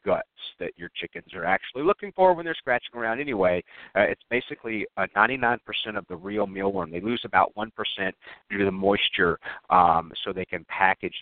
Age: 50-69